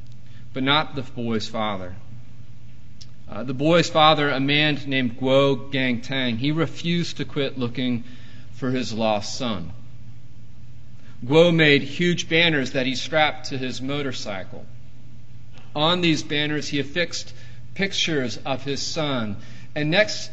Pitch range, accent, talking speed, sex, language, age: 120-160 Hz, American, 130 wpm, male, English, 40-59